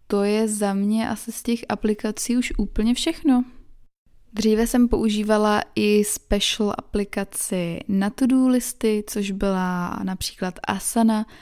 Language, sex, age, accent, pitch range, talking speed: Czech, female, 20-39, native, 195-225 Hz, 125 wpm